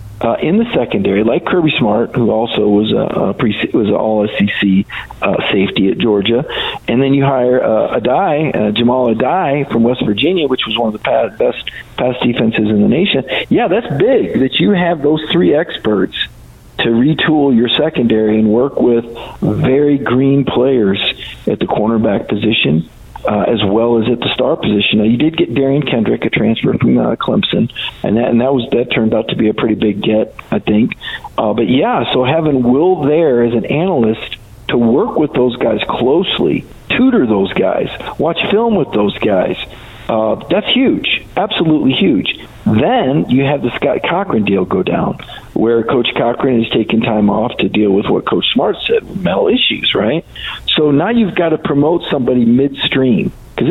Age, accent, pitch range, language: 50-69, American, 110-140 Hz, English